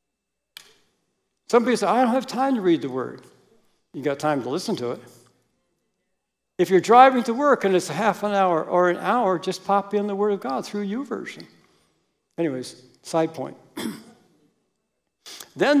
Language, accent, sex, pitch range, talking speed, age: English, American, male, 175-245 Hz, 165 wpm, 60-79